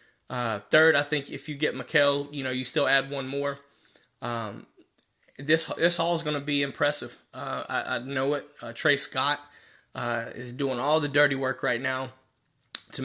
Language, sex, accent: English, male, American